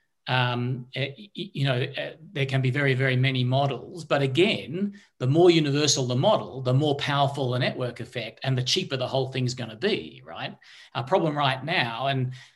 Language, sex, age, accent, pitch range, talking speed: English, male, 40-59, Australian, 130-165 Hz, 180 wpm